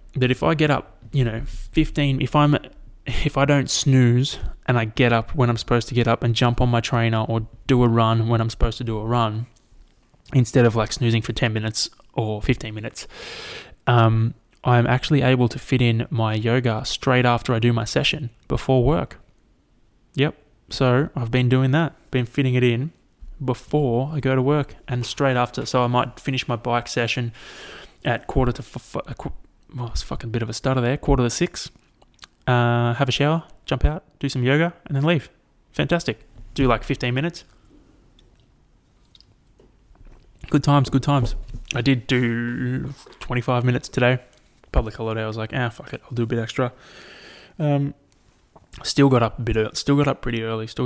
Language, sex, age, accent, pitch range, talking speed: English, male, 20-39, Australian, 115-135 Hz, 190 wpm